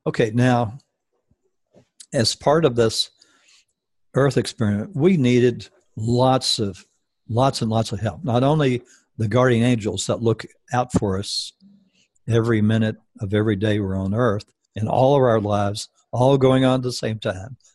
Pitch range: 110-130 Hz